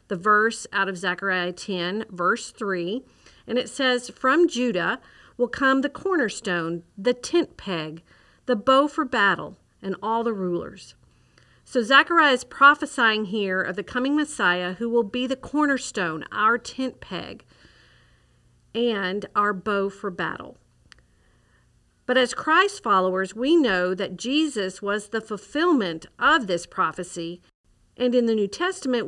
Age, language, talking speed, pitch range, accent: 50-69, English, 140 wpm, 190-250 Hz, American